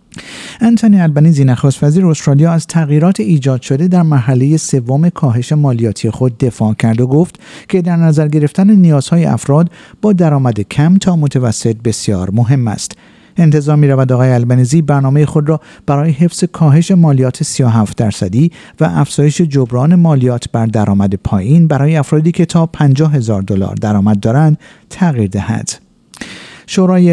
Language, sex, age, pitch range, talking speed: Persian, male, 50-69, 125-165 Hz, 145 wpm